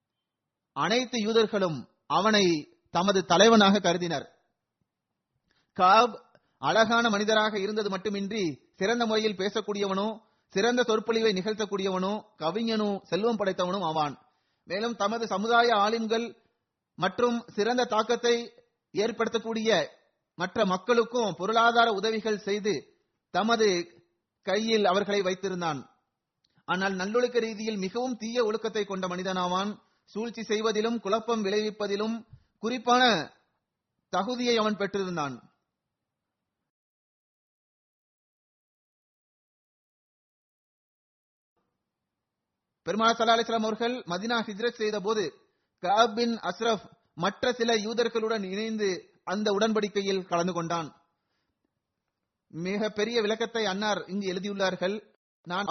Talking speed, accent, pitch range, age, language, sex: 80 wpm, native, 190-230 Hz, 30-49, Tamil, male